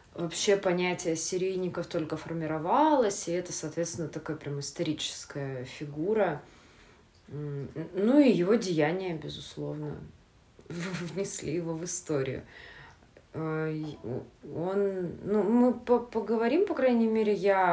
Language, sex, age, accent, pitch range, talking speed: Russian, female, 20-39, native, 150-185 Hz, 90 wpm